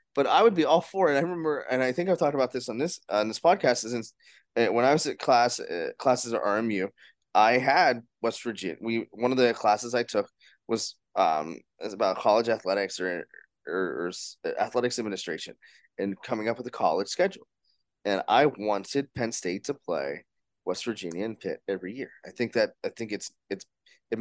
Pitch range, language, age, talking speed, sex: 105-130 Hz, English, 20-39, 210 wpm, male